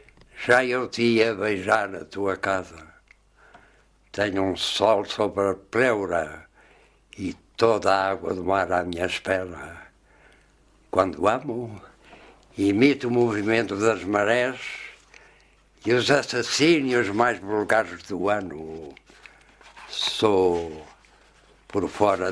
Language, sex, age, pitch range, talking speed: Portuguese, male, 60-79, 95-120 Hz, 110 wpm